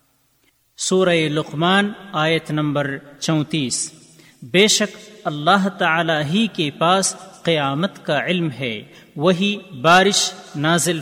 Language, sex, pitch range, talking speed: Urdu, male, 145-190 Hz, 105 wpm